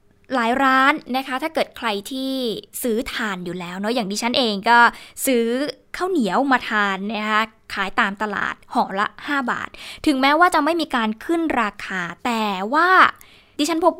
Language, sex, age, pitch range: Thai, female, 20-39, 225-290 Hz